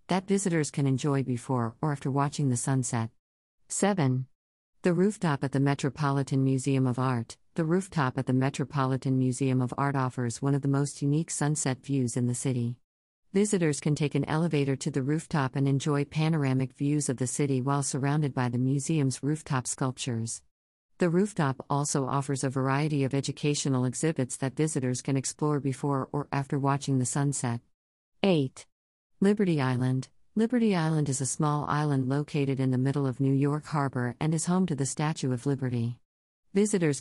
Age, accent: 50-69, American